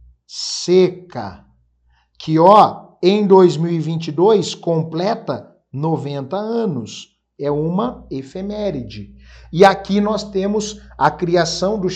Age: 50-69